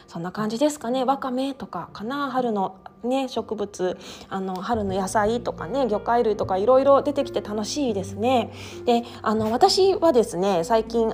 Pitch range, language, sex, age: 195-285 Hz, Japanese, female, 20-39